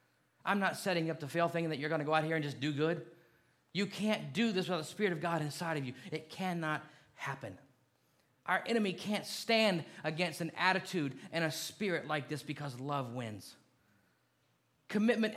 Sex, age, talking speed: male, 30-49, 185 wpm